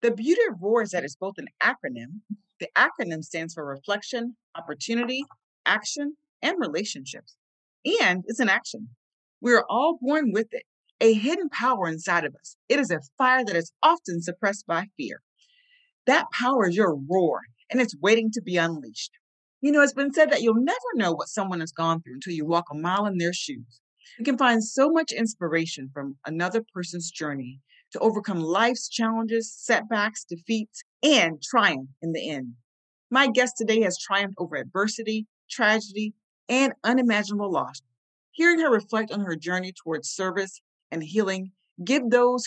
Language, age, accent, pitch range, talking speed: English, 40-59, American, 170-245 Hz, 170 wpm